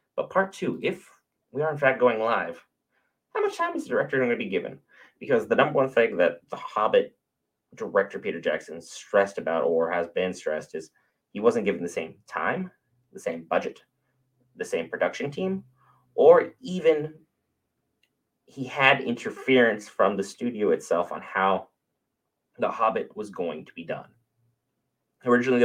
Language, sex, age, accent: English, male, 30-49, American